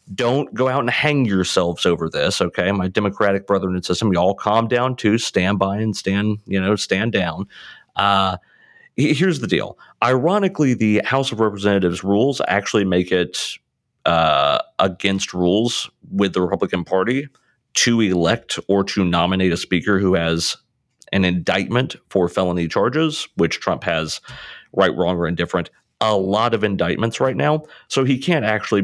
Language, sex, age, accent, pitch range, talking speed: English, male, 40-59, American, 90-125 Hz, 160 wpm